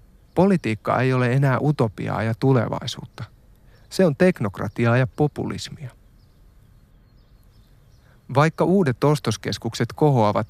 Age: 30-49